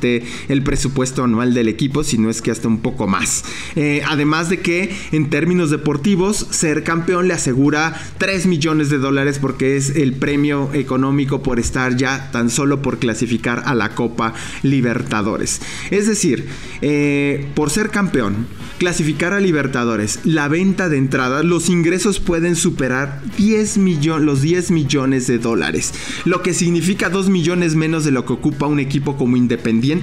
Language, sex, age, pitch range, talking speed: English, male, 20-39, 125-175 Hz, 160 wpm